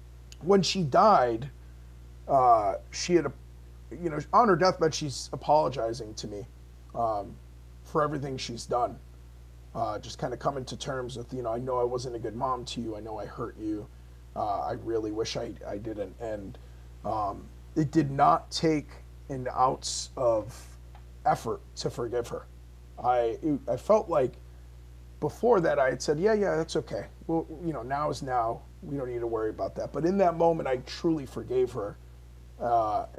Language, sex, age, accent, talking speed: English, male, 30-49, American, 180 wpm